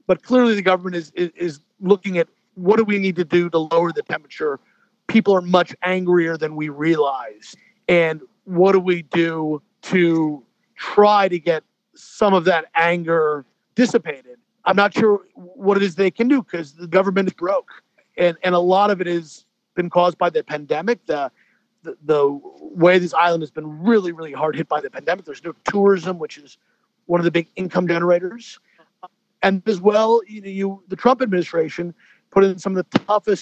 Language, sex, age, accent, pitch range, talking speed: English, male, 40-59, American, 170-200 Hz, 190 wpm